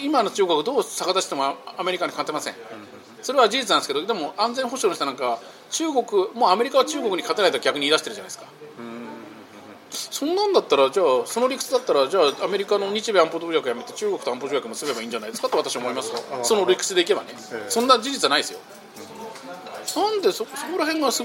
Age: 40-59